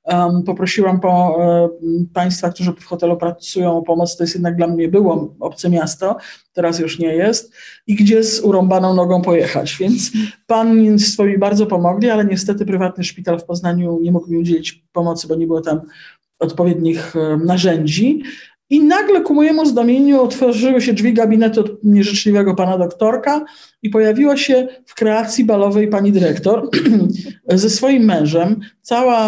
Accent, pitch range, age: native, 175-215 Hz, 50-69